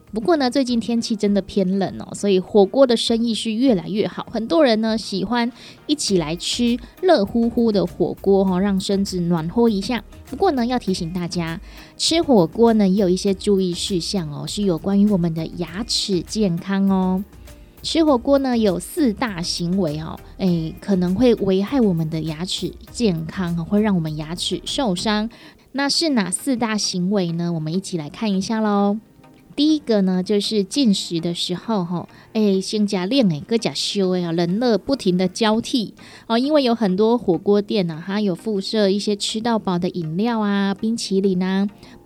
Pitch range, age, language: 185-230 Hz, 20-39, Chinese